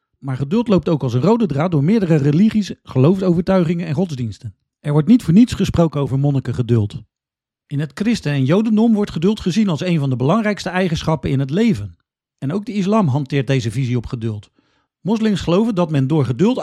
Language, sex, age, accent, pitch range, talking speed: Dutch, male, 40-59, Dutch, 140-205 Hz, 195 wpm